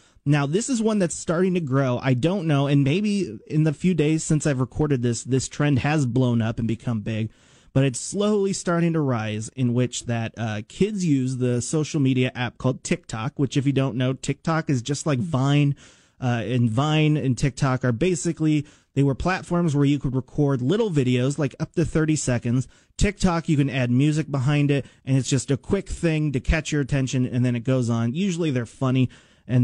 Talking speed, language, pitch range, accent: 210 wpm, English, 125-155 Hz, American